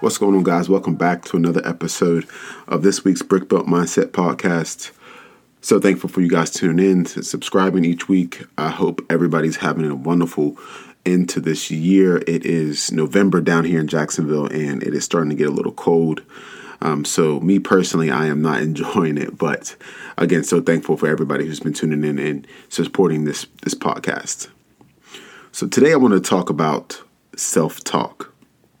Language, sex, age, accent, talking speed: English, male, 30-49, American, 175 wpm